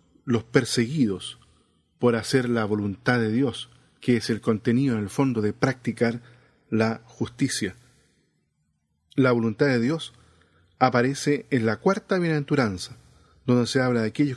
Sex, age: male, 40-59